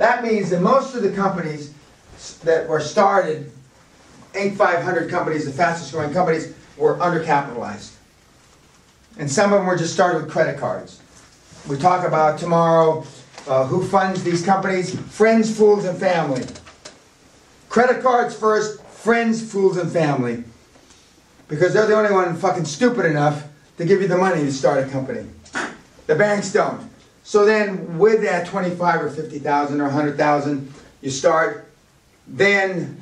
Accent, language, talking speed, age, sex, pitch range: American, English, 150 wpm, 40-59, male, 155-205 Hz